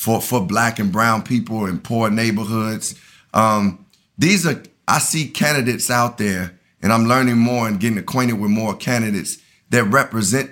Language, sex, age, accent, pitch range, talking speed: English, male, 30-49, American, 105-125 Hz, 165 wpm